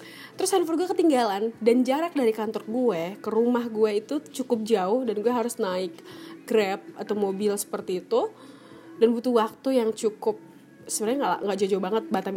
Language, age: Indonesian, 20-39